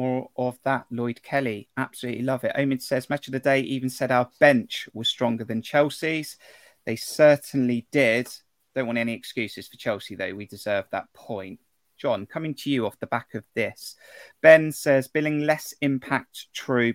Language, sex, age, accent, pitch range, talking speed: English, male, 30-49, British, 115-140 Hz, 180 wpm